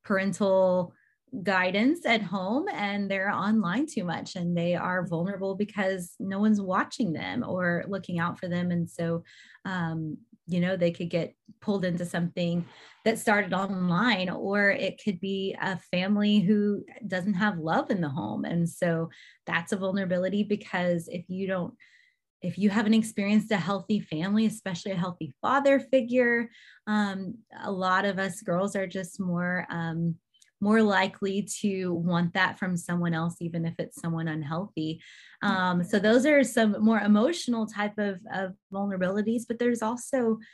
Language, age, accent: English, 20-39, American